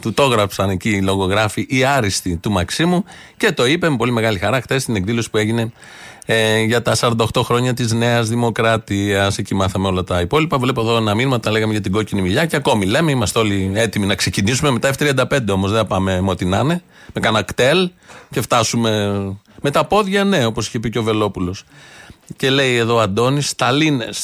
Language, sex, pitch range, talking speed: Greek, male, 105-140 Hz, 205 wpm